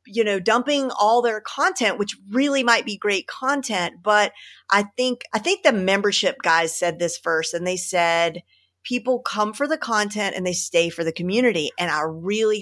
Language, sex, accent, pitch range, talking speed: English, female, American, 170-220 Hz, 190 wpm